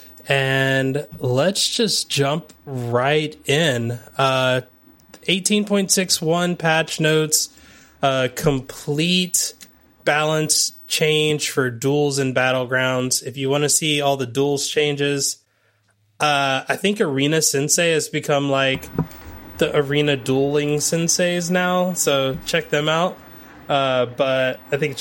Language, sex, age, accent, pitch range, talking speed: English, male, 20-39, American, 135-155 Hz, 120 wpm